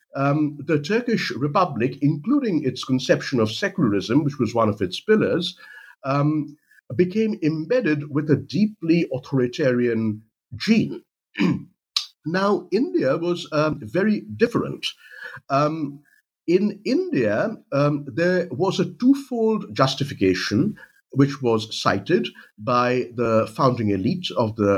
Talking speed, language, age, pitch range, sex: 115 wpm, English, 50-69, 110-165 Hz, male